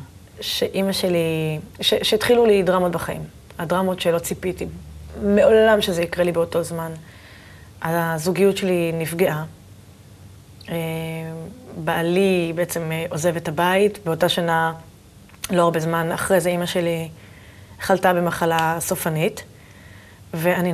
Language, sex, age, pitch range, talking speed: Hebrew, female, 20-39, 160-195 Hz, 105 wpm